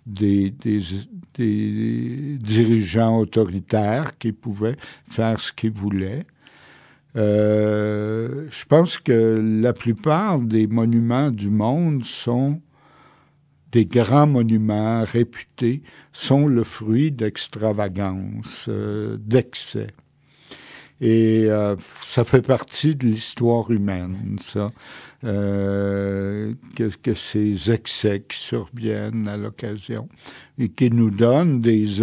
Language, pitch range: French, 105-125 Hz